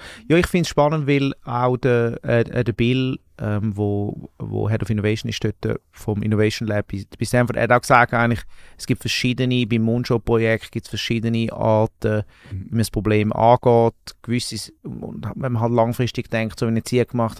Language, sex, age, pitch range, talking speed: German, male, 30-49, 110-125 Hz, 185 wpm